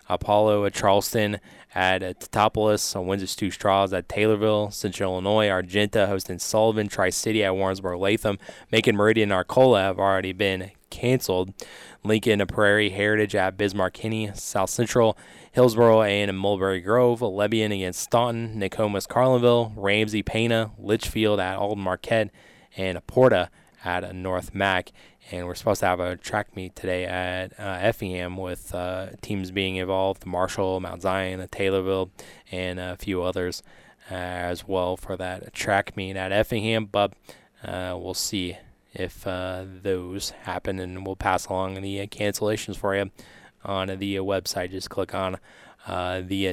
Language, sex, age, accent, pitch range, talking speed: English, male, 20-39, American, 95-105 Hz, 150 wpm